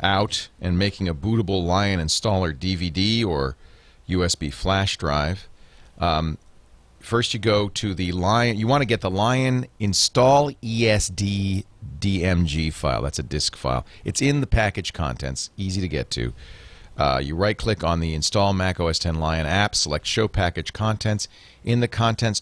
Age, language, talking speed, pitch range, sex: 40-59, English, 165 wpm, 85-110 Hz, male